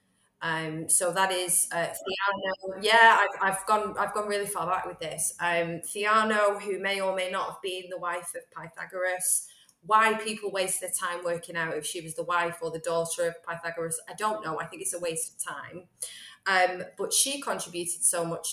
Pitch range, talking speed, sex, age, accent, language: 170-205 Hz, 200 wpm, female, 20-39, British, English